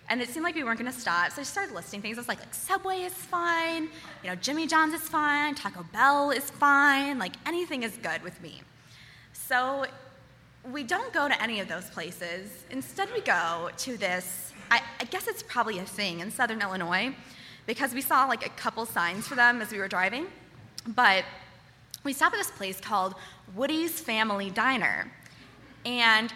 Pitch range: 210-295 Hz